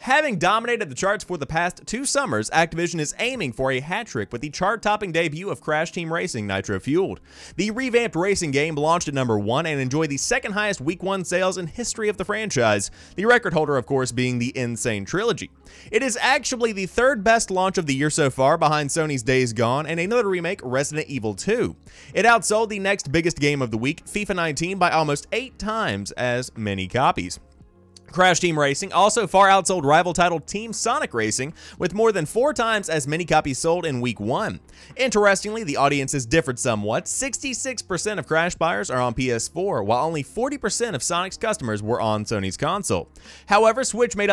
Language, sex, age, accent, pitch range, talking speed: English, male, 30-49, American, 135-210 Hz, 190 wpm